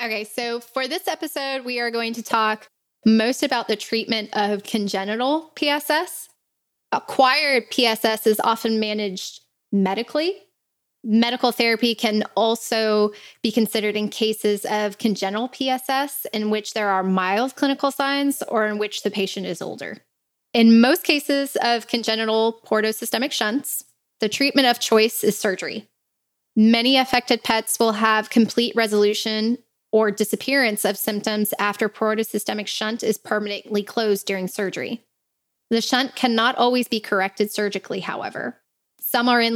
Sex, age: female, 10-29